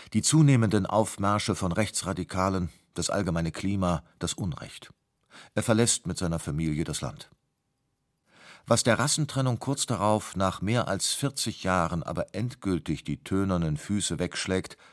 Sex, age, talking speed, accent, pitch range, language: male, 40-59, 135 wpm, German, 90-115 Hz, German